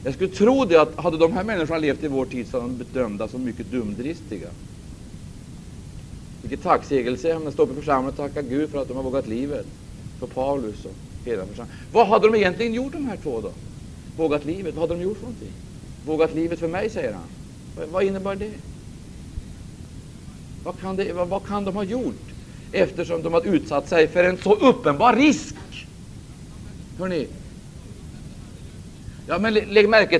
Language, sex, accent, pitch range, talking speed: Swedish, male, Norwegian, 140-215 Hz, 180 wpm